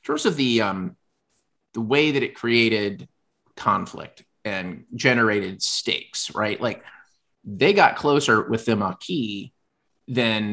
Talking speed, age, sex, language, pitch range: 130 wpm, 30-49, male, English, 105-145 Hz